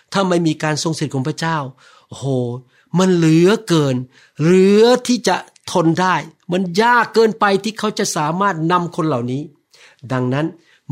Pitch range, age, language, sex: 135-175 Hz, 60-79, Thai, male